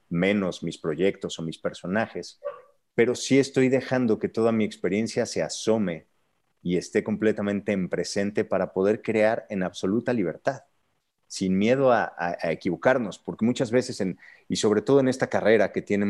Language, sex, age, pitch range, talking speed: Spanish, male, 30-49, 95-120 Hz, 170 wpm